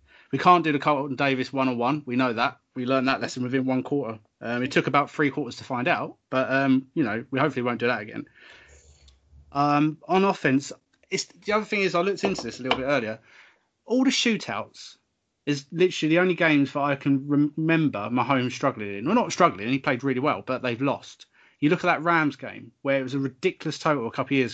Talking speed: 230 wpm